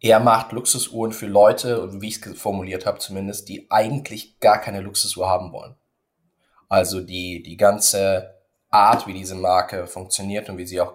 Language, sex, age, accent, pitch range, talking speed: German, male, 20-39, German, 95-120 Hz, 170 wpm